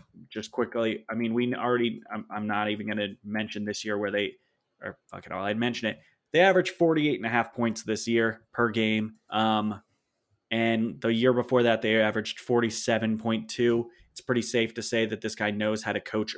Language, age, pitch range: English, 20-39, 110-125 Hz